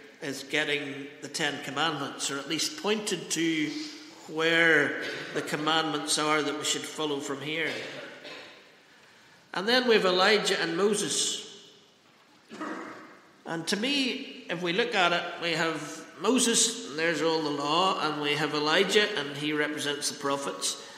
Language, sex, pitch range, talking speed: English, male, 155-215 Hz, 150 wpm